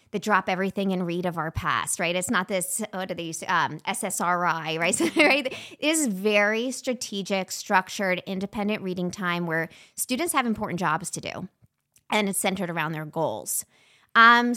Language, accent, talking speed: English, American, 170 wpm